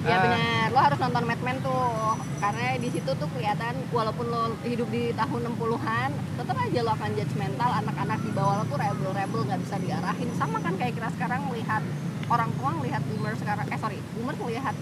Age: 20-39